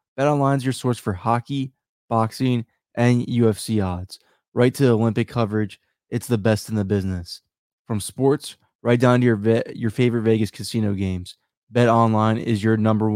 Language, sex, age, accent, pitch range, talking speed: English, male, 20-39, American, 105-120 Hz, 175 wpm